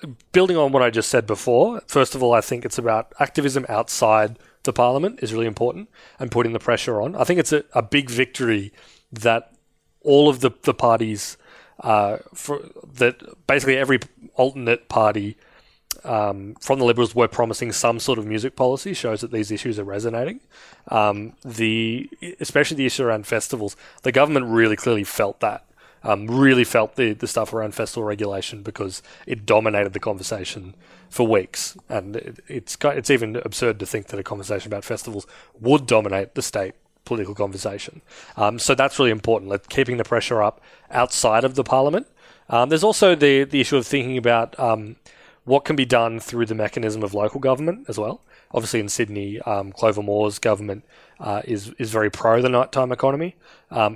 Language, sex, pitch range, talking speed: English, male, 105-130 Hz, 180 wpm